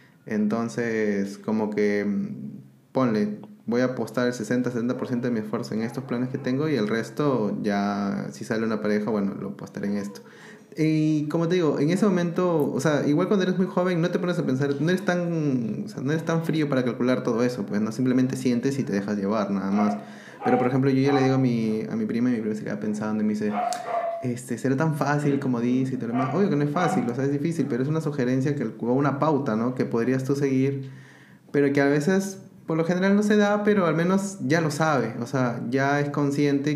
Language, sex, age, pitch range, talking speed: Spanish, male, 20-39, 115-155 Hz, 240 wpm